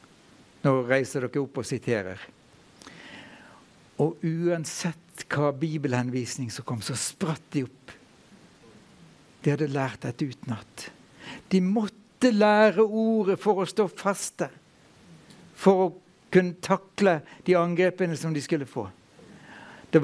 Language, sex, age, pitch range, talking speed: English, male, 60-79, 125-170 Hz, 115 wpm